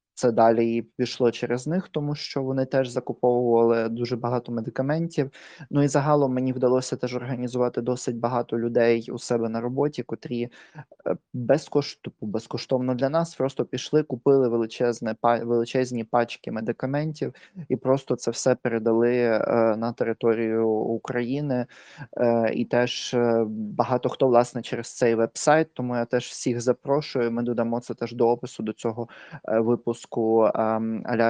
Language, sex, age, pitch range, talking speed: Ukrainian, male, 20-39, 115-130 Hz, 130 wpm